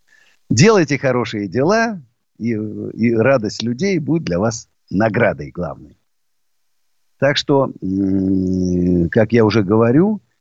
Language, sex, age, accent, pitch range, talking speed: Russian, male, 50-69, native, 100-145 Hz, 105 wpm